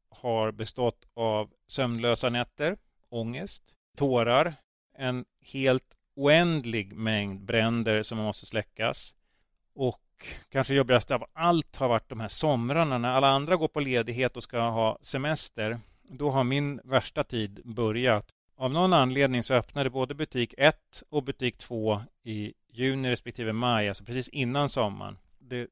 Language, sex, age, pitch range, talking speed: Swedish, male, 30-49, 110-135 Hz, 140 wpm